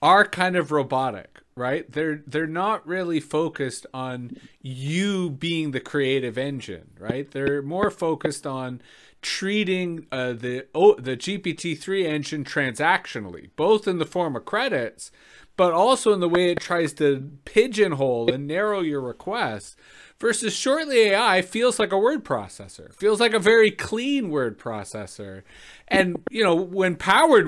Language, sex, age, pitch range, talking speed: English, male, 30-49, 135-195 Hz, 150 wpm